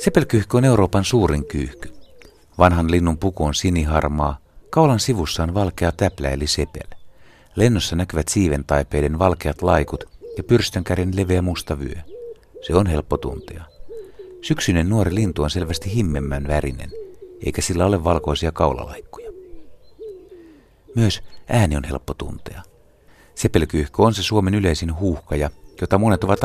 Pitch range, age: 80-115 Hz, 60-79